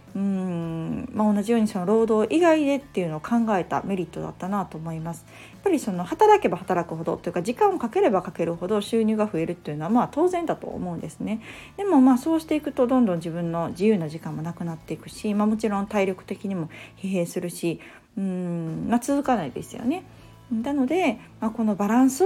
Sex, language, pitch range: female, Japanese, 175-235 Hz